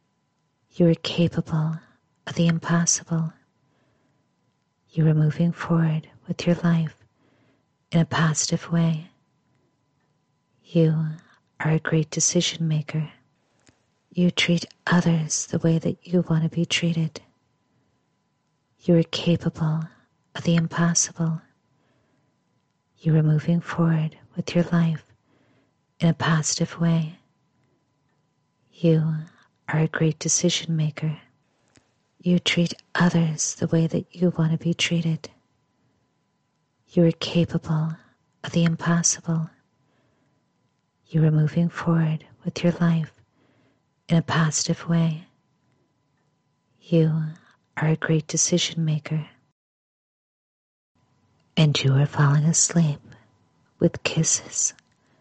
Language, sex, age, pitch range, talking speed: English, female, 50-69, 150-170 Hz, 110 wpm